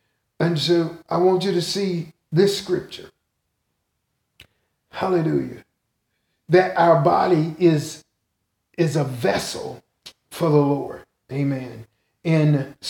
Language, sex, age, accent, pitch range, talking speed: English, male, 50-69, American, 120-170 Hz, 100 wpm